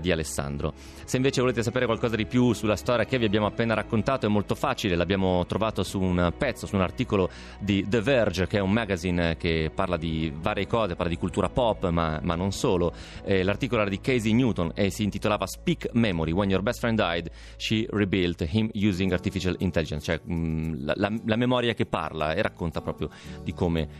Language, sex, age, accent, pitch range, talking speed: Italian, male, 30-49, native, 85-110 Hz, 205 wpm